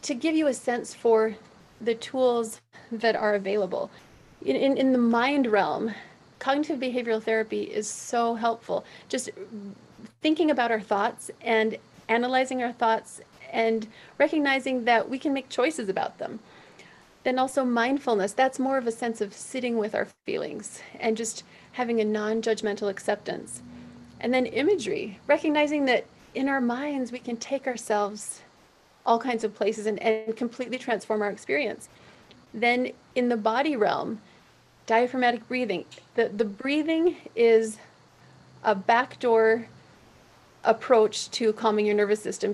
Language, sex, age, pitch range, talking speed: English, female, 40-59, 220-255 Hz, 140 wpm